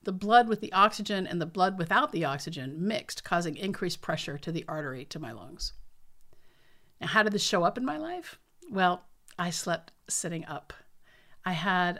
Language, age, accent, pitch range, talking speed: English, 50-69, American, 165-210 Hz, 185 wpm